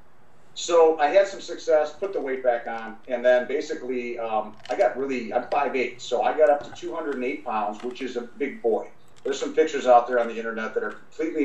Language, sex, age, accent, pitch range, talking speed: English, male, 40-59, American, 115-145 Hz, 220 wpm